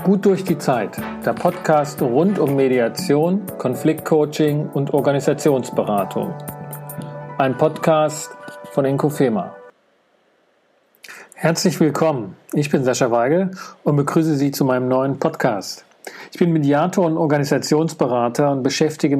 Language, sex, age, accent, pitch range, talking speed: German, male, 40-59, German, 140-165 Hz, 115 wpm